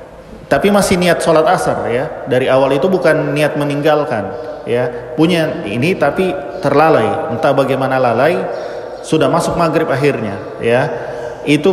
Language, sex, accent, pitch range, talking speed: Indonesian, male, native, 145-175 Hz, 135 wpm